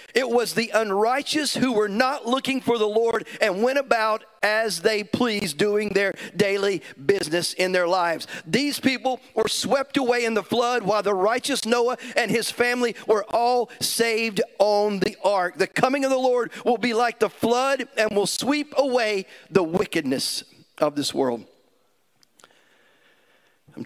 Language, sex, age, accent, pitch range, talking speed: English, male, 50-69, American, 180-245 Hz, 165 wpm